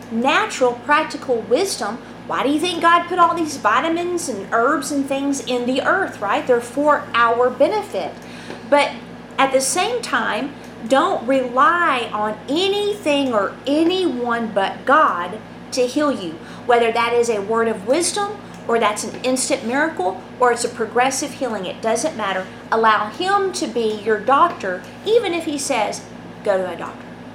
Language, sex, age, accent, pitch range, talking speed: English, female, 40-59, American, 225-295 Hz, 160 wpm